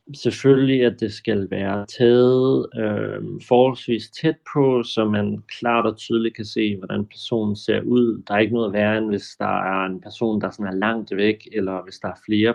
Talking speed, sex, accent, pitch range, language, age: 195 wpm, male, native, 100-120 Hz, Danish, 30-49